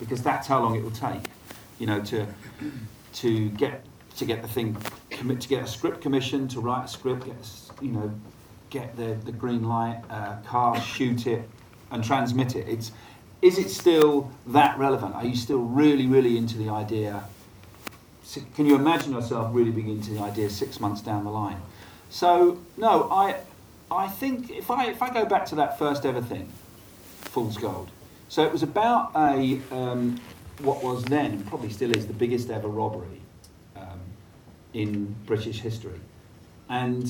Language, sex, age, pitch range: English, male, 40-59, 105-130 Hz